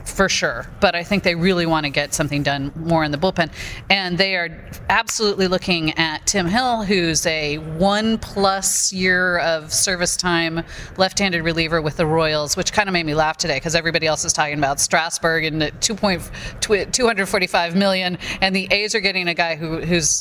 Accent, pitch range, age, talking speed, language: American, 150-180 Hz, 40-59, 185 wpm, English